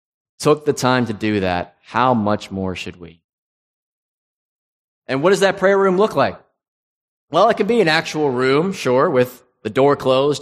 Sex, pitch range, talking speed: male, 110-150 Hz, 180 wpm